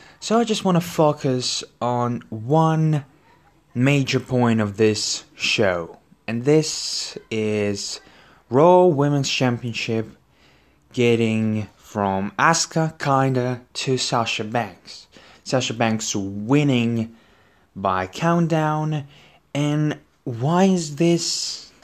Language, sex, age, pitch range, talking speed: English, male, 20-39, 115-155 Hz, 95 wpm